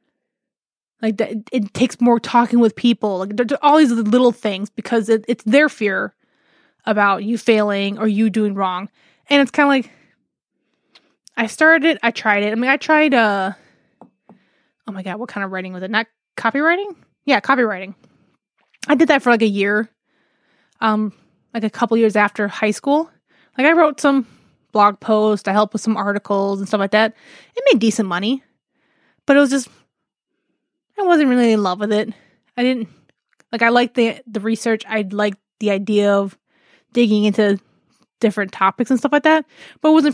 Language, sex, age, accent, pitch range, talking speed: English, female, 20-39, American, 210-260 Hz, 180 wpm